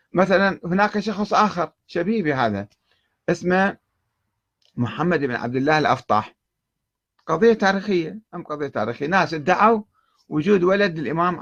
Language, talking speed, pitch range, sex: Arabic, 115 wpm, 115-170 Hz, male